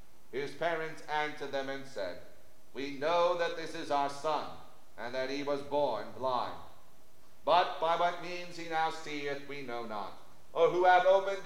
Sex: male